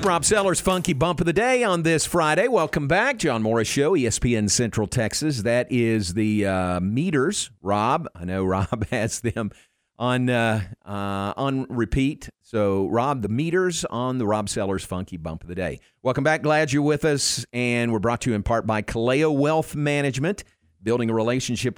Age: 50-69